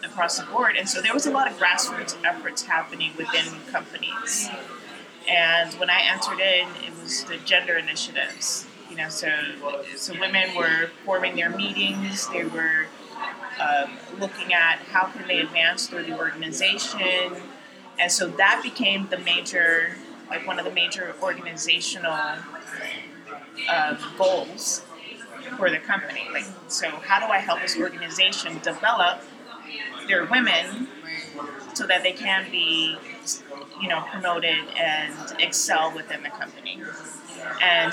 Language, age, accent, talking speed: English, 30-49, American, 140 wpm